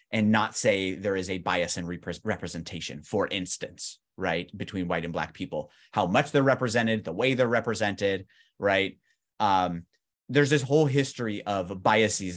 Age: 30-49